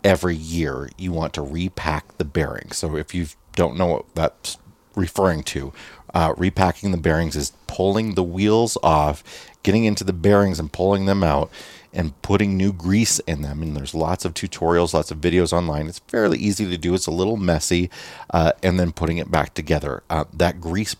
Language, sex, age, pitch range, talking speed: English, male, 30-49, 80-100 Hz, 195 wpm